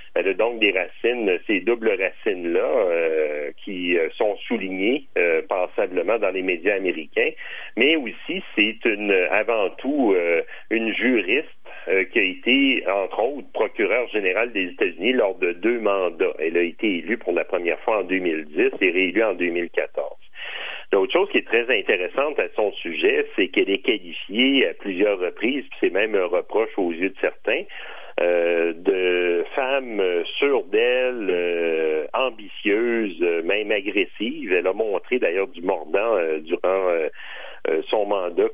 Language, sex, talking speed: French, male, 160 wpm